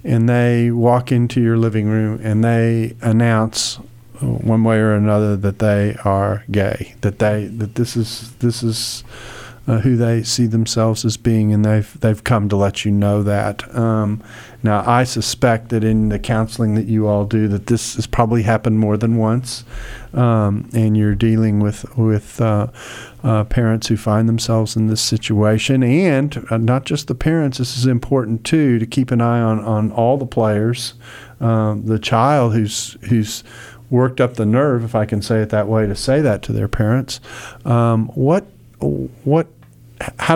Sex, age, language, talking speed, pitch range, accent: male, 50-69, English, 180 wpm, 110-120 Hz, American